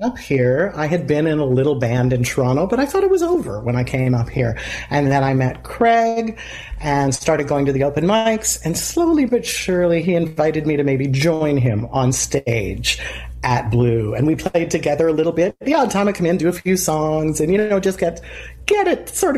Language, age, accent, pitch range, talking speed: English, 40-59, American, 130-180 Hz, 230 wpm